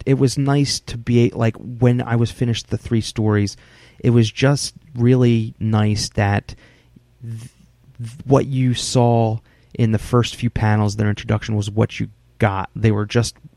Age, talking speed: 30-49, 165 wpm